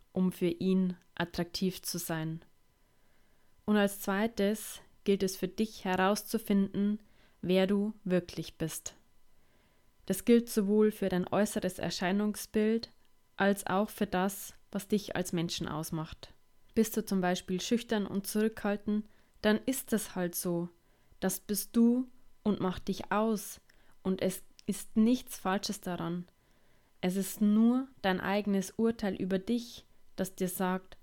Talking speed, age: 135 wpm, 20-39